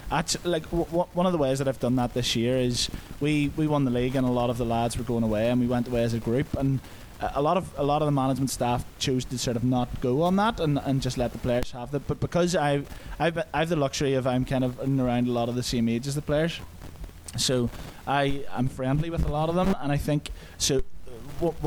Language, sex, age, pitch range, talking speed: English, male, 20-39, 125-145 Hz, 275 wpm